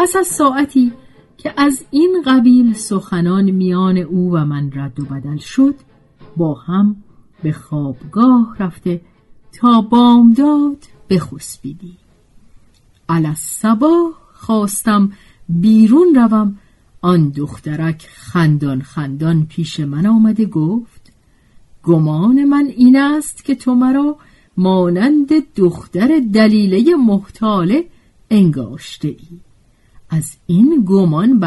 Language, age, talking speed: Persian, 40-59, 100 wpm